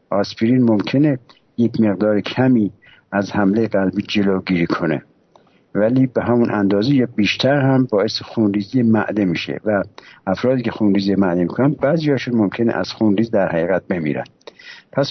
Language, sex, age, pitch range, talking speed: English, male, 60-79, 100-125 Hz, 145 wpm